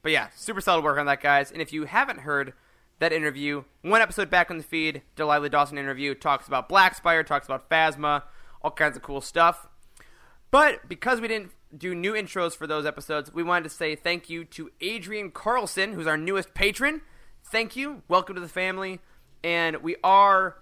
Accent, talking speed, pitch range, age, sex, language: American, 200 wpm, 145-190 Hz, 20-39, male, English